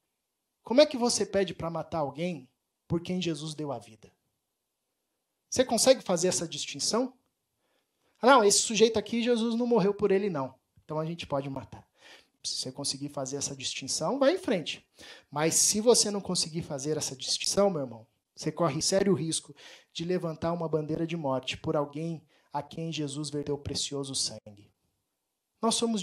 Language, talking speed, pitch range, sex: Portuguese, 170 wpm, 150-205 Hz, male